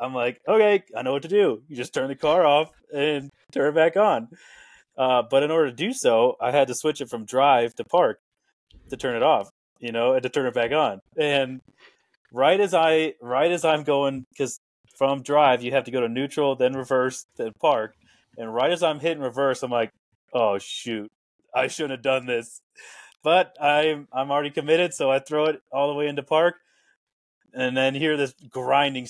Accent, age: American, 30-49